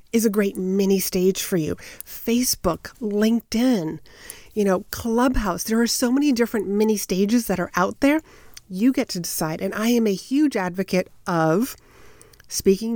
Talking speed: 160 wpm